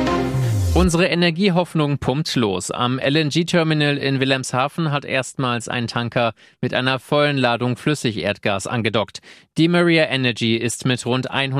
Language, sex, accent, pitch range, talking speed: German, male, German, 115-135 Hz, 125 wpm